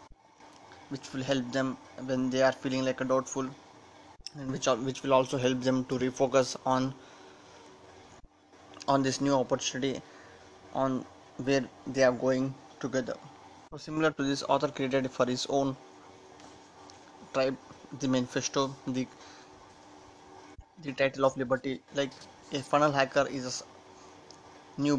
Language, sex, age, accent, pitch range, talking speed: English, male, 20-39, Indian, 125-135 Hz, 130 wpm